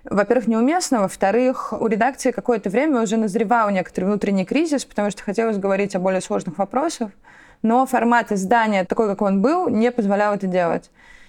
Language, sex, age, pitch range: Russian, female, 20-39, 195-235 Hz